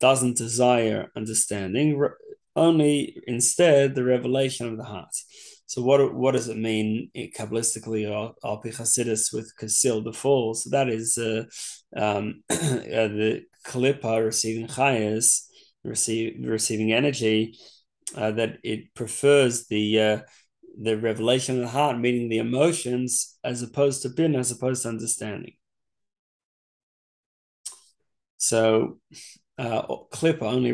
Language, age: English, 20-39